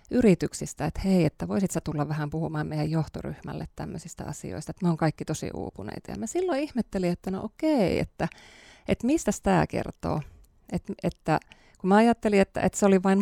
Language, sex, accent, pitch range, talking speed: Finnish, female, native, 160-205 Hz, 180 wpm